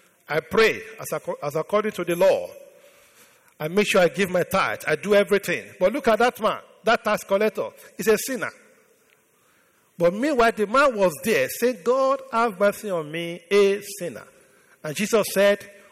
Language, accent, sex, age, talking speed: English, Nigerian, male, 50-69, 170 wpm